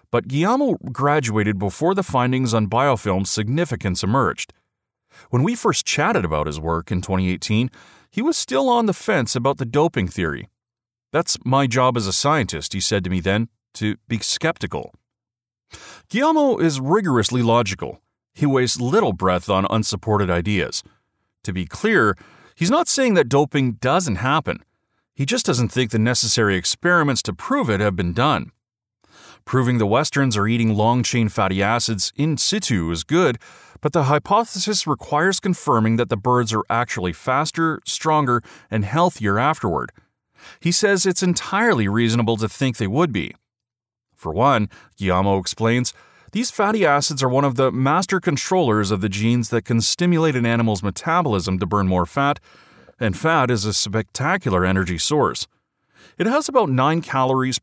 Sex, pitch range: male, 105-150 Hz